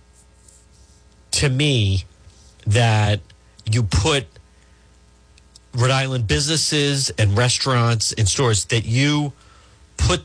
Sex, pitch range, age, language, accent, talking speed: male, 100-135 Hz, 50-69, English, American, 90 wpm